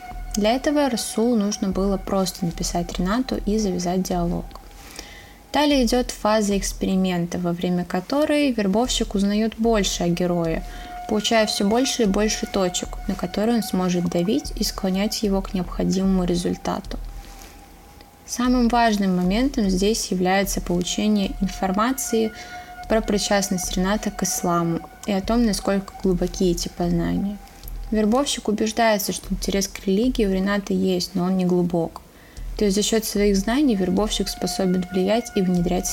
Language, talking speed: Russian, 140 wpm